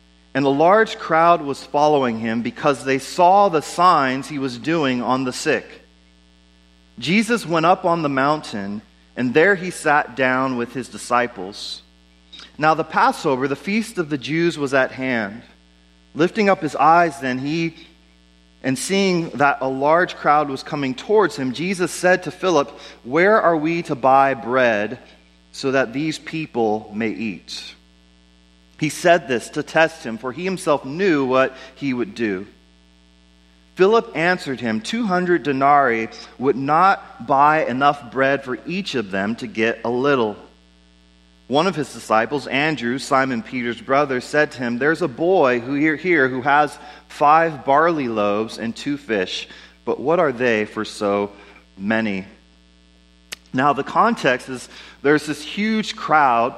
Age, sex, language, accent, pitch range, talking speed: 30-49, male, English, American, 110-155 Hz, 155 wpm